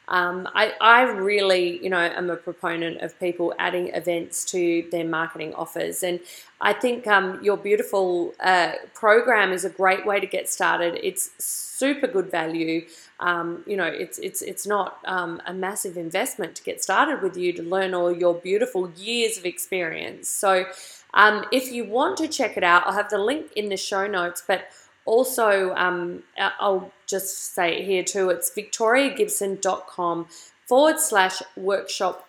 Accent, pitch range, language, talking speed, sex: Australian, 180-215 Hz, English, 165 wpm, female